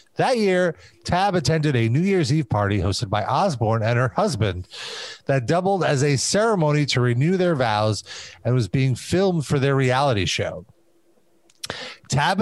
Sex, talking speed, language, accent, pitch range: male, 160 wpm, English, American, 125-180 Hz